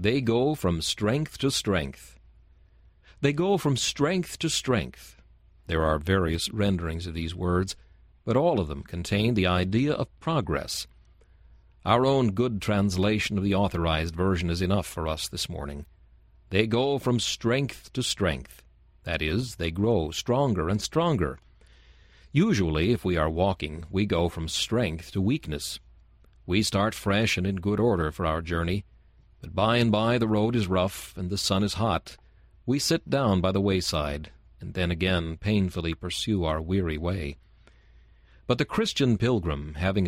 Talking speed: 160 wpm